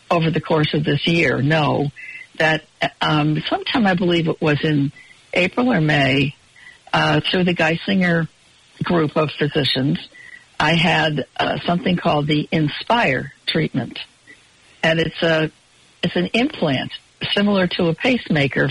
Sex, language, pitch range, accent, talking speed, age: female, English, 150-180 Hz, American, 140 wpm, 60-79